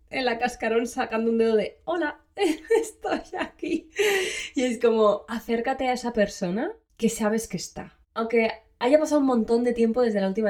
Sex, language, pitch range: female, Spanish, 175-230 Hz